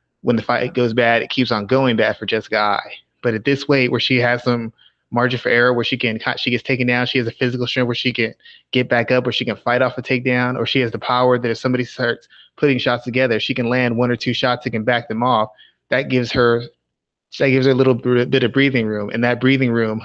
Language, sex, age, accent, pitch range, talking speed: English, male, 20-39, American, 115-130 Hz, 265 wpm